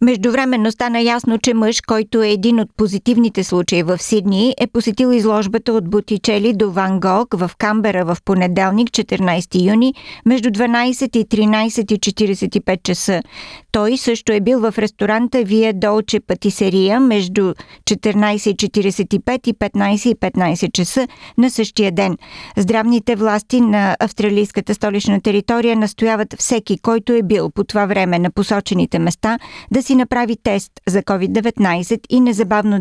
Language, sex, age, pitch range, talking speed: Bulgarian, female, 50-69, 200-235 Hz, 140 wpm